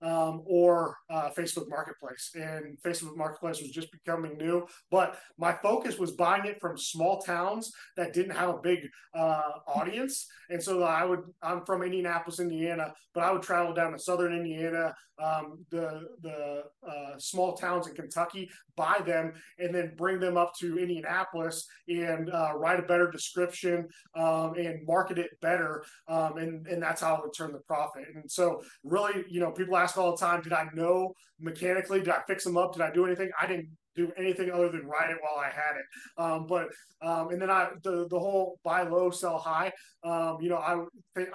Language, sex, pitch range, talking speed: English, male, 160-180 Hz, 195 wpm